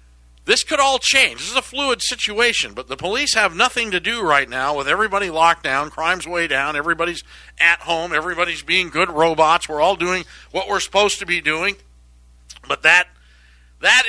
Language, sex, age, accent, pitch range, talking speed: English, male, 60-79, American, 130-195 Hz, 185 wpm